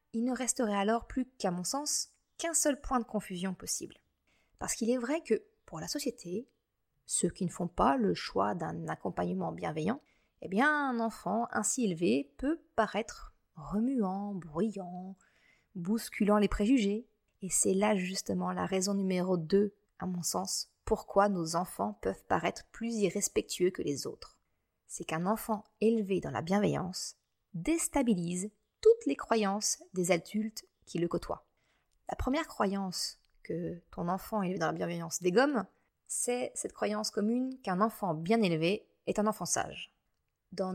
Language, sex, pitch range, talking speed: French, female, 180-235 Hz, 160 wpm